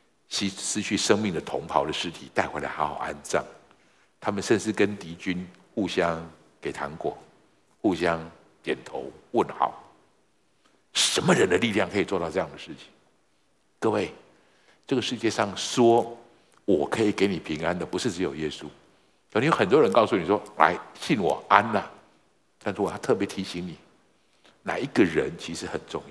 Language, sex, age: Chinese, male, 60-79